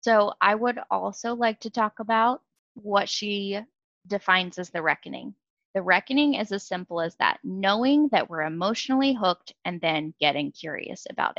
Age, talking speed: 20-39, 165 wpm